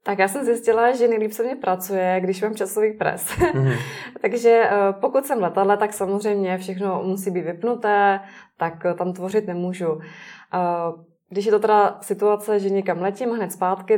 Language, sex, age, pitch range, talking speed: Czech, female, 20-39, 185-215 Hz, 165 wpm